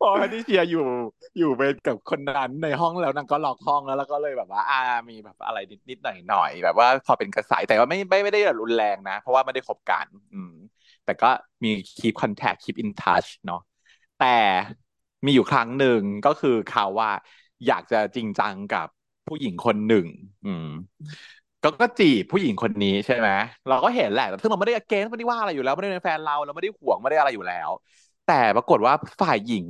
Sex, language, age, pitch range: male, Thai, 20-39, 125-205 Hz